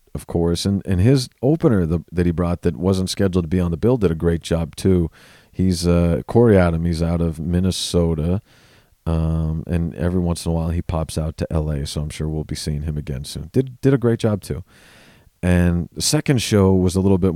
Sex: male